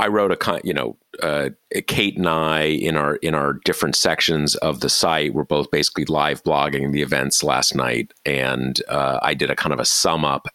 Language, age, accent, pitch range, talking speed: English, 40-59, American, 75-85 Hz, 215 wpm